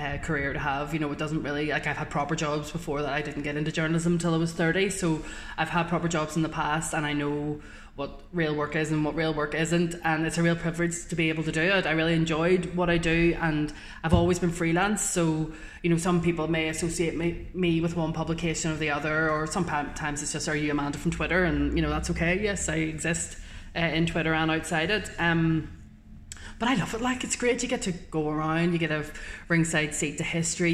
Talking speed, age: 245 wpm, 20-39